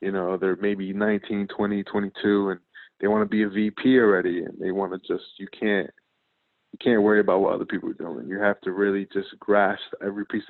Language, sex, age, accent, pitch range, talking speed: English, male, 20-39, American, 100-110 Hz, 225 wpm